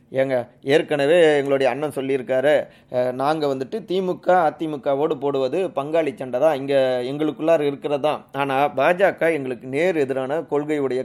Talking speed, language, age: 120 wpm, Tamil, 30-49